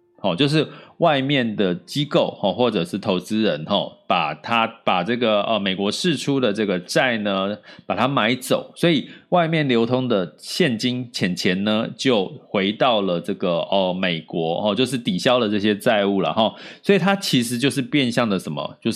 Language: Chinese